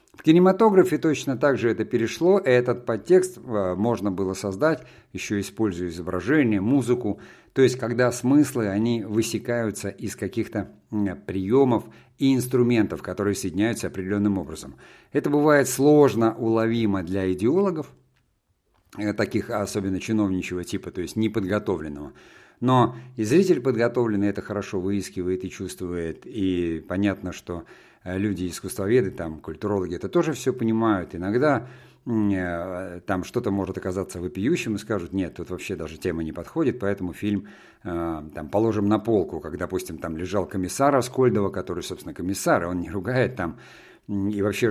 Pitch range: 90-115 Hz